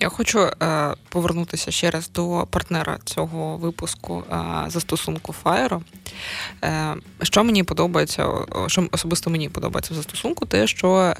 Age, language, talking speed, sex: 20-39, Russian, 130 wpm, female